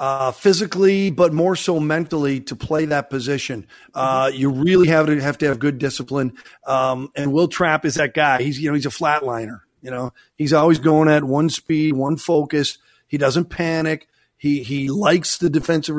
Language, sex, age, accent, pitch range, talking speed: English, male, 40-59, American, 135-160 Hz, 190 wpm